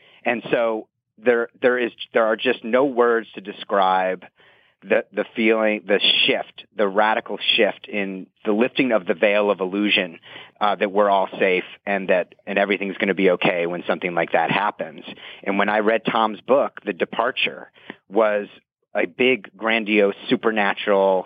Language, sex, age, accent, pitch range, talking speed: English, male, 40-59, American, 95-110 Hz, 165 wpm